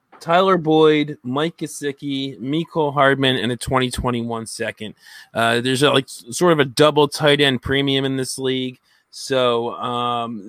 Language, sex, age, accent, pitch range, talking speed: English, male, 20-39, American, 120-135 Hz, 155 wpm